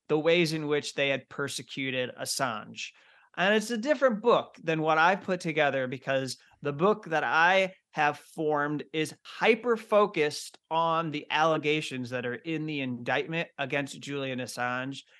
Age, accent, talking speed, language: 30-49, American, 155 wpm, English